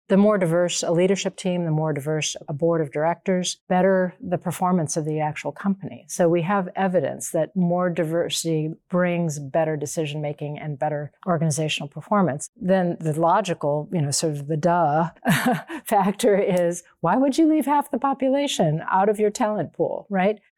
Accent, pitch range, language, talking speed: American, 160-200 Hz, English, 170 wpm